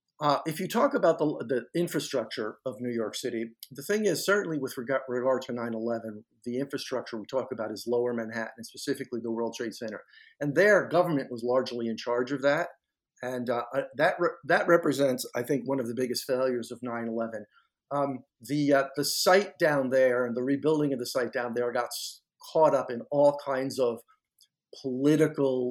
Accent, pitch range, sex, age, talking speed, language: American, 120-145 Hz, male, 50-69, 190 wpm, English